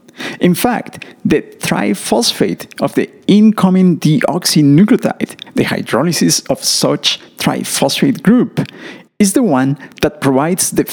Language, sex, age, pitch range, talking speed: English, male, 50-69, 160-230 Hz, 110 wpm